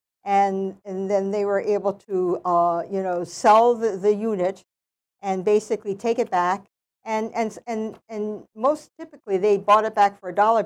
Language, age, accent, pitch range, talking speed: English, 50-69, American, 195-245 Hz, 180 wpm